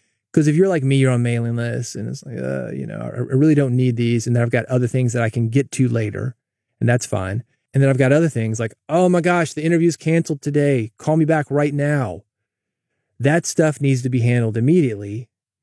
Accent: American